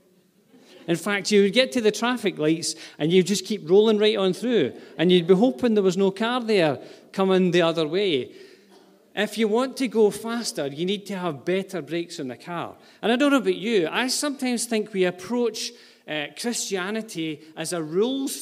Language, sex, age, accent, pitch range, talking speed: English, male, 40-59, British, 165-220 Hz, 200 wpm